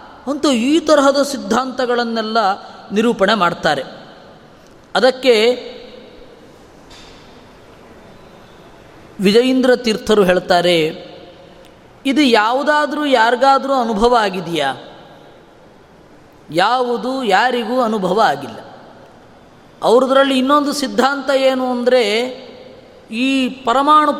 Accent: native